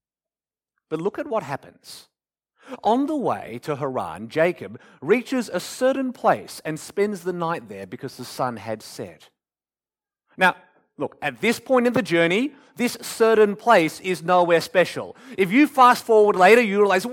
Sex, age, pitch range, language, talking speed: male, 30-49, 160-240 Hz, English, 160 wpm